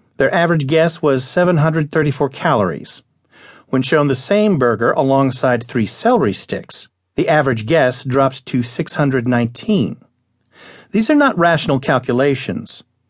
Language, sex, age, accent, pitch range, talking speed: English, male, 40-59, American, 120-165 Hz, 120 wpm